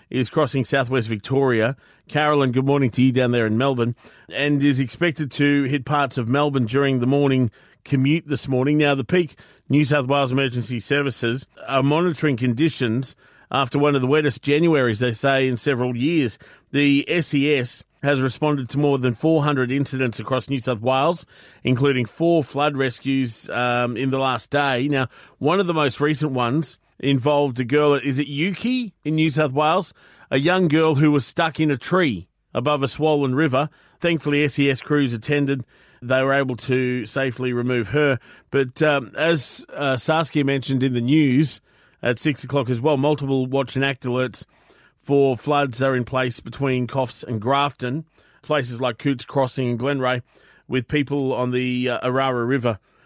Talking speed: 175 wpm